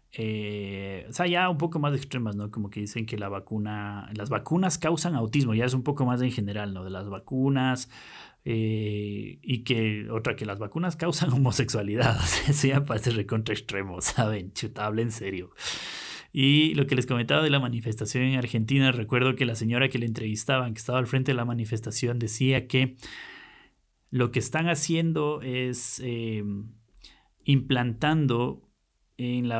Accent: Mexican